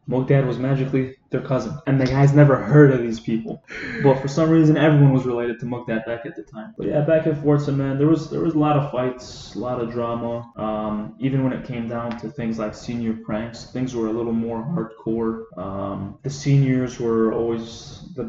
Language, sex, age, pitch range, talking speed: English, male, 20-39, 115-135 Hz, 225 wpm